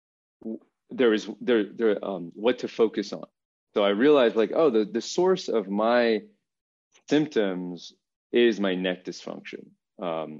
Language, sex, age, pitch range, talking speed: English, male, 30-49, 90-110 Hz, 145 wpm